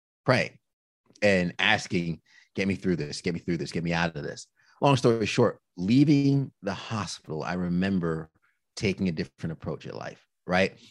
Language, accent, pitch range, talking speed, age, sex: English, American, 95-130 Hz, 170 wpm, 30-49, male